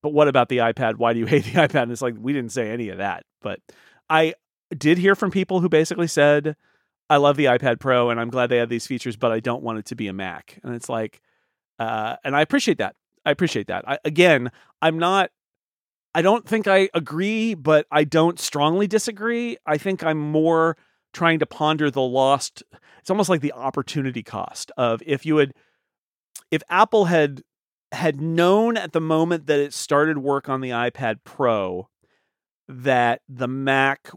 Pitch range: 120-160 Hz